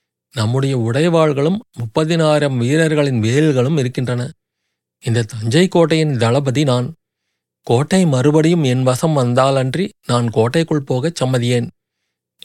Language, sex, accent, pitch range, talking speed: Tamil, male, native, 115-150 Hz, 95 wpm